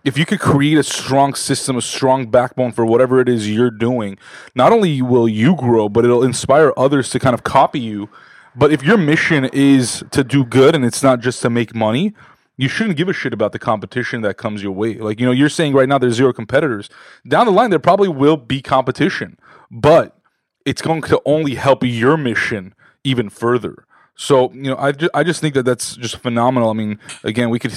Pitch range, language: 110-135 Hz, English